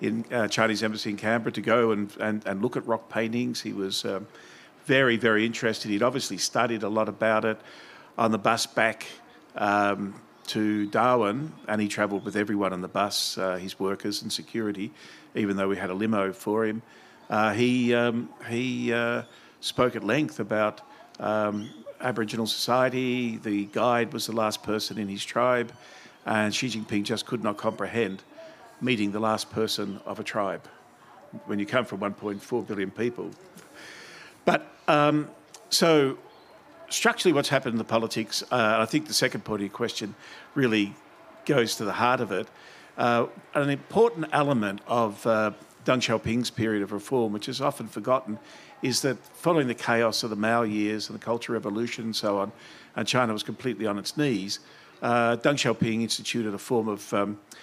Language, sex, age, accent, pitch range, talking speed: English, male, 50-69, Australian, 105-120 Hz, 175 wpm